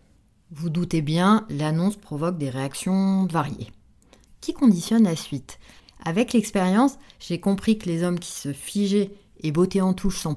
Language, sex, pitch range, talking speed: French, female, 150-210 Hz, 155 wpm